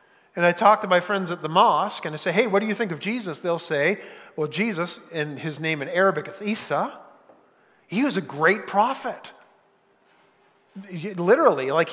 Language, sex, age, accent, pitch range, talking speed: English, male, 40-59, American, 165-210 Hz, 185 wpm